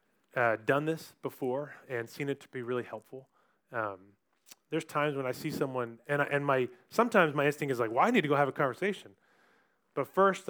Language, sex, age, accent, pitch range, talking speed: English, male, 20-39, American, 115-150 Hz, 210 wpm